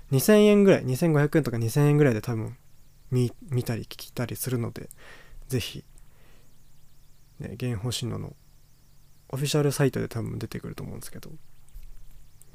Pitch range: 125-145 Hz